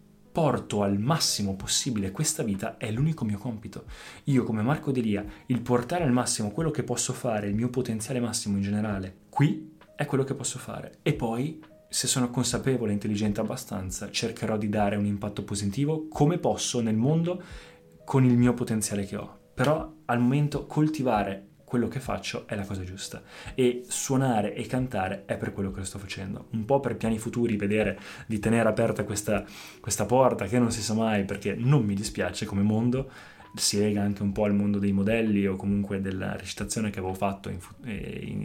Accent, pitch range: native, 100-130 Hz